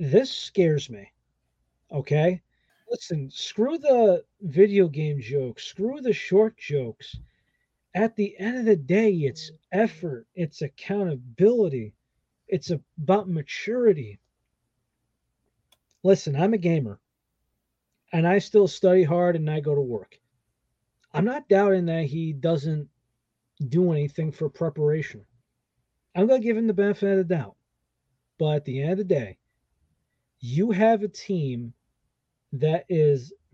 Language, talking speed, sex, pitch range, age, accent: English, 130 wpm, male, 135-195 Hz, 40-59, American